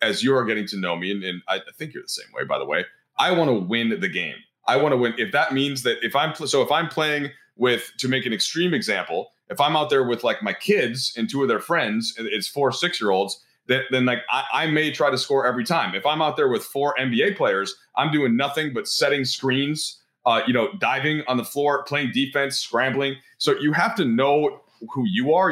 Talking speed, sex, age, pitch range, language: 240 wpm, male, 30-49, 130-165 Hz, English